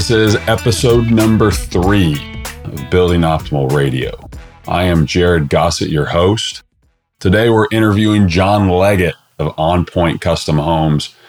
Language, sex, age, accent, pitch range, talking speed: English, male, 30-49, American, 90-110 Hz, 135 wpm